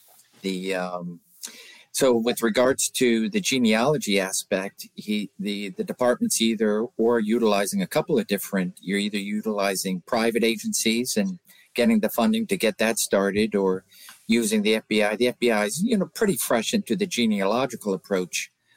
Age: 50-69